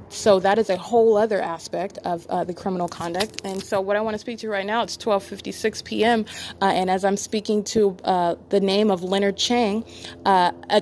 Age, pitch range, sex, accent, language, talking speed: 20-39, 180-210 Hz, female, American, English, 215 wpm